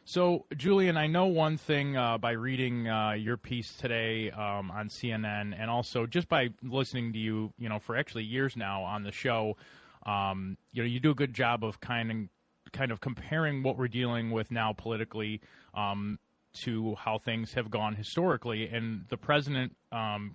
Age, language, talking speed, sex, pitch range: 20-39, English, 185 wpm, male, 105-125 Hz